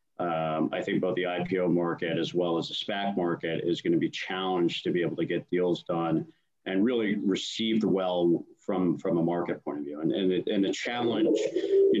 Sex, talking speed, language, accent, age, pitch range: male, 210 wpm, English, American, 40-59, 85-100 Hz